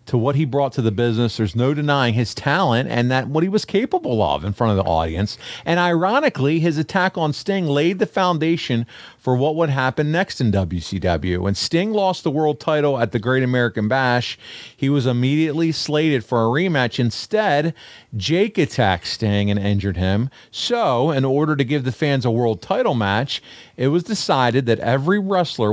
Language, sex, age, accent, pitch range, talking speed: English, male, 40-59, American, 110-150 Hz, 190 wpm